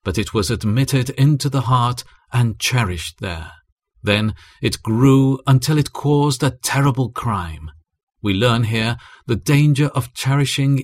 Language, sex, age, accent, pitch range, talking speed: English, male, 40-59, British, 95-135 Hz, 145 wpm